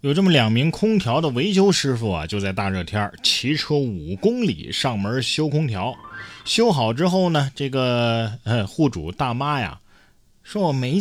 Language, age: Chinese, 20-39